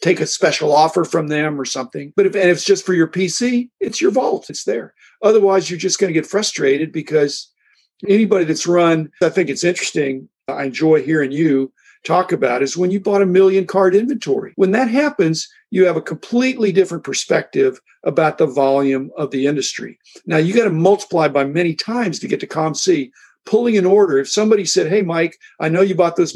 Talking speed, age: 205 wpm, 50-69